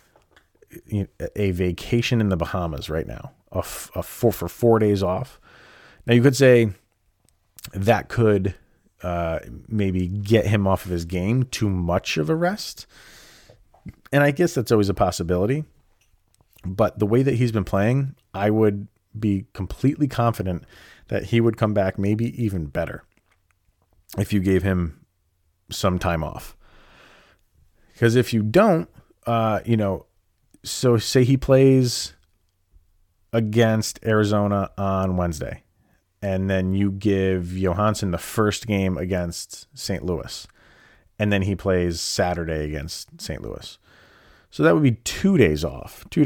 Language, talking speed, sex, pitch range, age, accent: English, 140 wpm, male, 90-115 Hz, 30-49, American